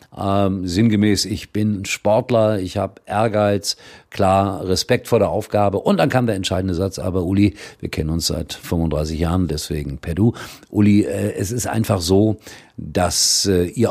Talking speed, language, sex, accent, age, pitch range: 170 wpm, German, male, German, 50-69, 80-105 Hz